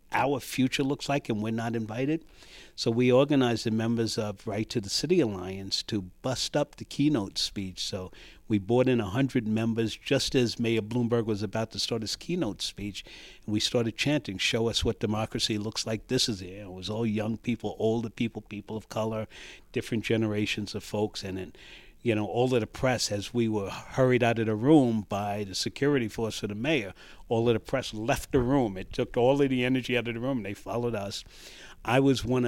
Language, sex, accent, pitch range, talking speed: English, male, American, 105-125 Hz, 210 wpm